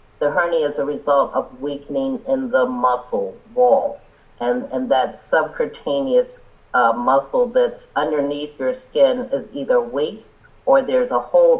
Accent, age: American, 50-69